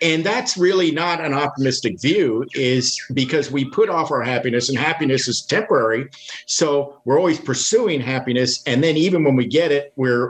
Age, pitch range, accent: 50-69, 120-145 Hz, American